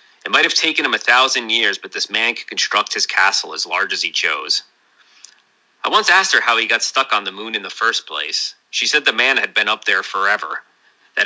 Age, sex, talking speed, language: 30-49, male, 240 wpm, English